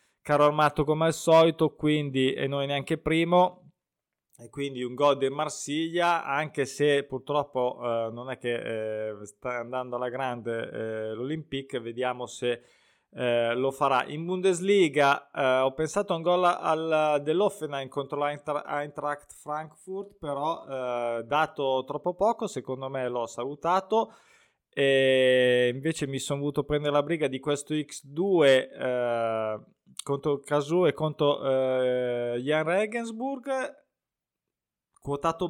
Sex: male